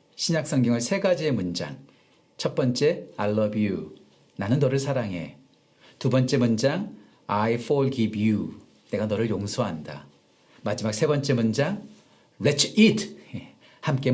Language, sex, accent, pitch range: Korean, male, native, 120-165 Hz